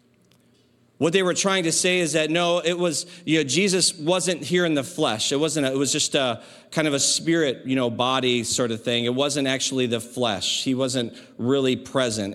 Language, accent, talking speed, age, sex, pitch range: English, American, 220 wpm, 40-59, male, 115-150 Hz